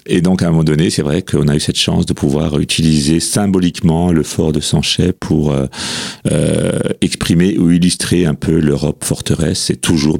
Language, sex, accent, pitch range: French, male, French, 75-95 Hz